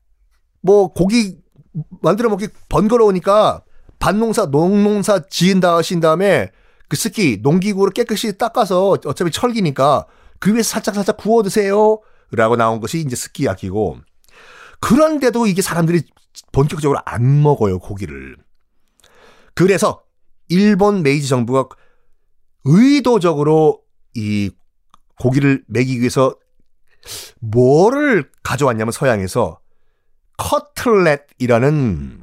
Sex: male